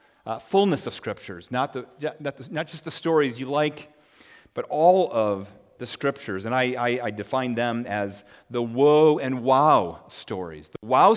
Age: 40-59